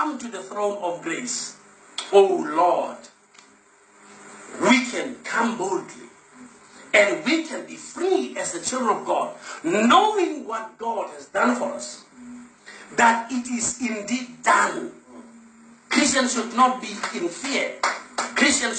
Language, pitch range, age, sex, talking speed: English, 230-305 Hz, 50-69, male, 130 wpm